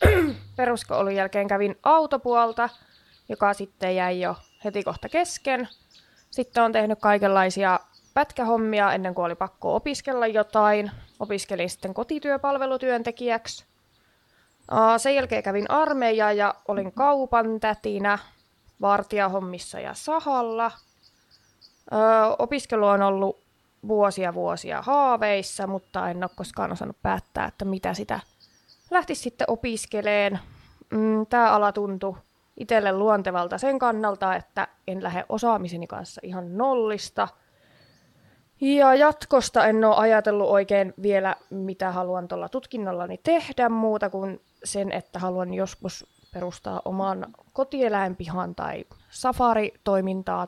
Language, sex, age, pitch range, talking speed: Finnish, female, 20-39, 195-240 Hz, 110 wpm